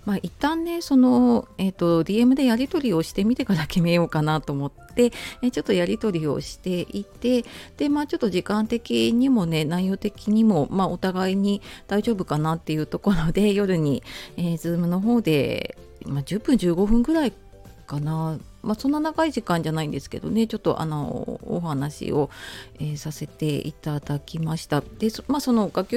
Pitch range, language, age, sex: 155-220 Hz, Japanese, 30-49, female